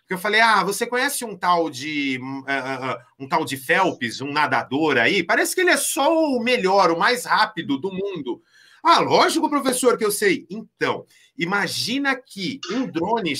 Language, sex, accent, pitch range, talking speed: Portuguese, male, Brazilian, 150-245 Hz, 180 wpm